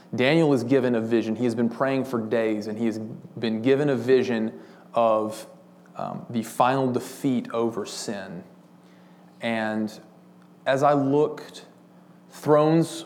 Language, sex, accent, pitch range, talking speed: English, male, American, 110-135 Hz, 140 wpm